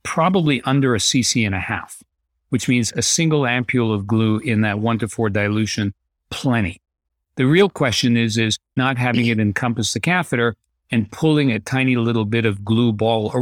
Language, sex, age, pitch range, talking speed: English, male, 50-69, 105-130 Hz, 190 wpm